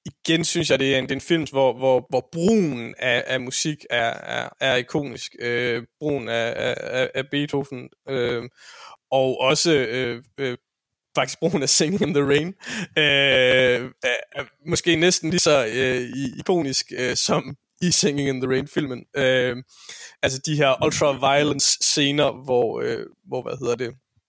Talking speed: 165 wpm